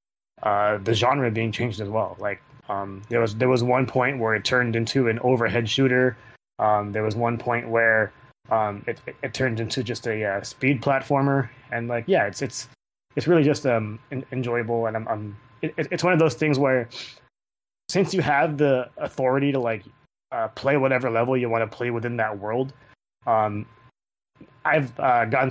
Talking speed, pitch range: 195 wpm, 115-130 Hz